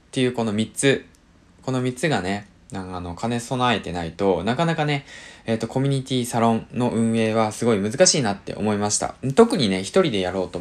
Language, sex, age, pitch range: Japanese, male, 20-39, 90-130 Hz